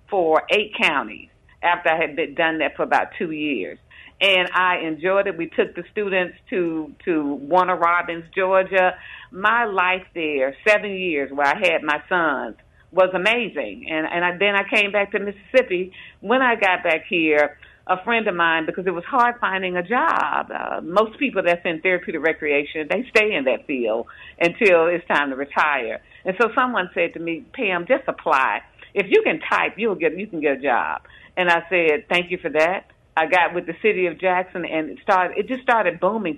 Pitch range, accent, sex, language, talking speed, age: 160-205 Hz, American, female, English, 200 wpm, 50-69